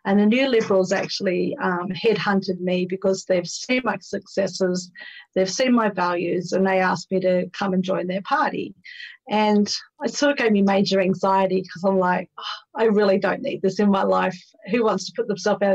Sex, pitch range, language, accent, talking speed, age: female, 190-220 Hz, English, Australian, 200 wpm, 40-59